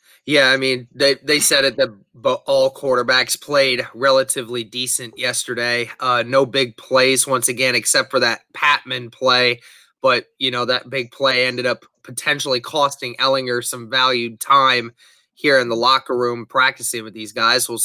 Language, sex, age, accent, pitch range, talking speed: English, male, 20-39, American, 125-145 Hz, 170 wpm